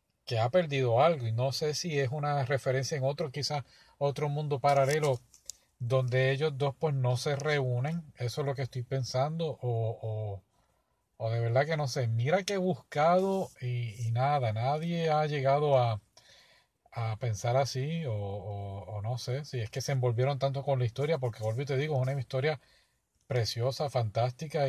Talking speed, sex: 185 wpm, male